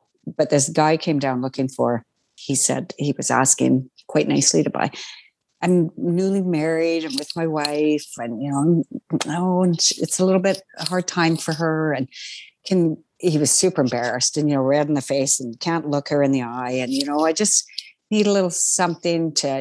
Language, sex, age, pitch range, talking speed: English, female, 50-69, 145-190 Hz, 205 wpm